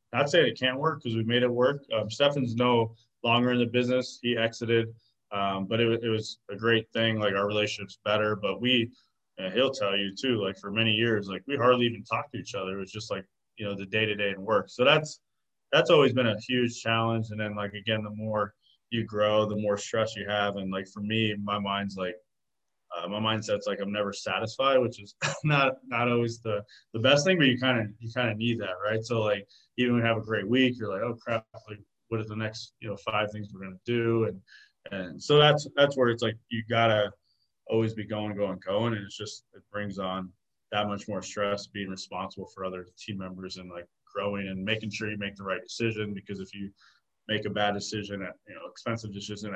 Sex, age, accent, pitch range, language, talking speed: male, 20-39, American, 100-115 Hz, English, 235 wpm